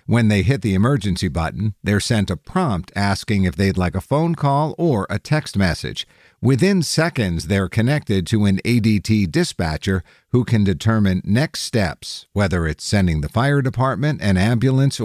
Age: 50-69